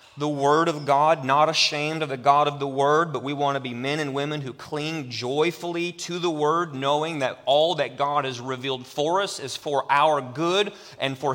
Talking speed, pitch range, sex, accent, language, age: 215 wpm, 135-160 Hz, male, American, English, 30-49